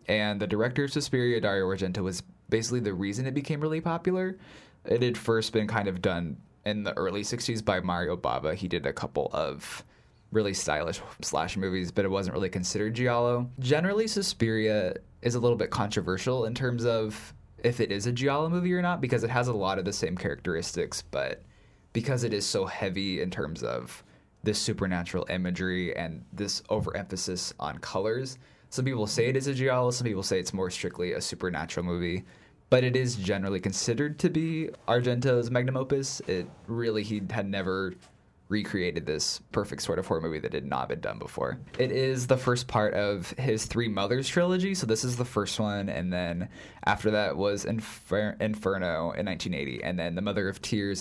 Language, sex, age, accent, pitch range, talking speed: English, male, 20-39, American, 100-125 Hz, 190 wpm